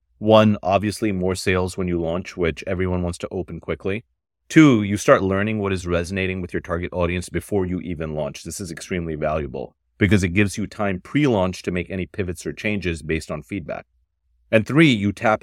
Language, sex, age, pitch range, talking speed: English, male, 30-49, 85-105 Hz, 200 wpm